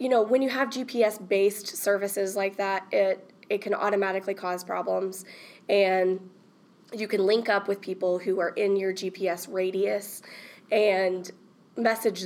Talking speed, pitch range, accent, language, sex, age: 145 wpm, 185-205 Hz, American, English, female, 20-39